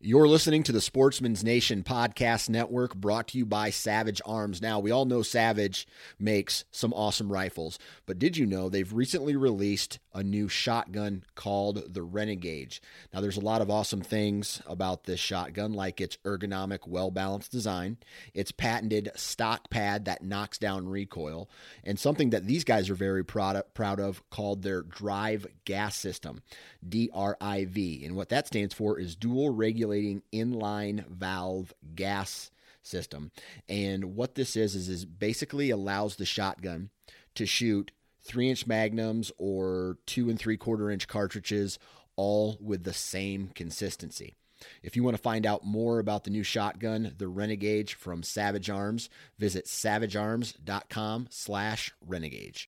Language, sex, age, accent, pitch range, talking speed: English, male, 30-49, American, 95-110 Hz, 150 wpm